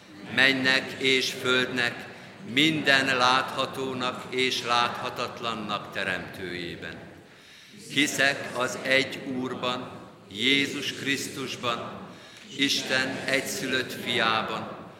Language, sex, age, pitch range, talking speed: Hungarian, male, 50-69, 120-135 Hz, 70 wpm